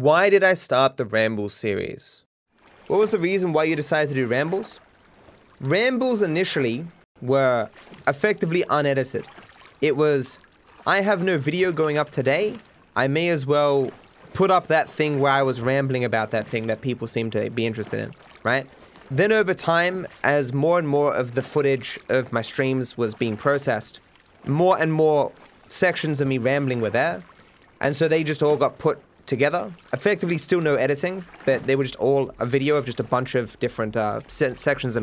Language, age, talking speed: English, 20-39, 185 wpm